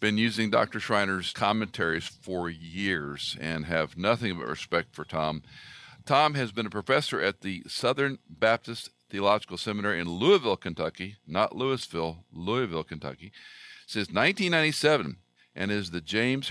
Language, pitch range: English, 85-125 Hz